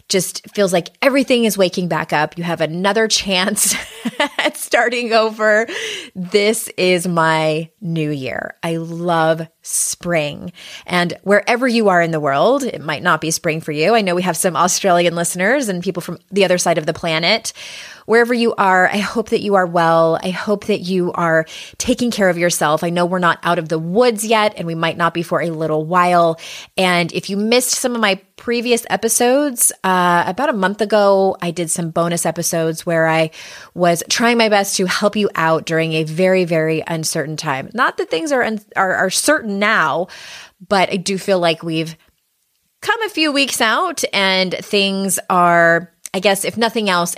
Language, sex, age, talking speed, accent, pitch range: English, female, 20-39, 195 wpm, American, 170-220 Hz